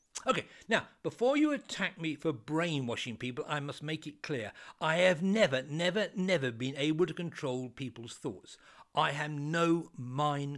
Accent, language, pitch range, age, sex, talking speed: British, English, 135-205 Hz, 60-79, male, 165 wpm